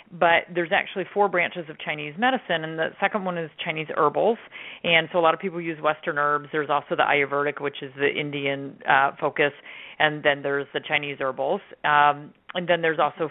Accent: American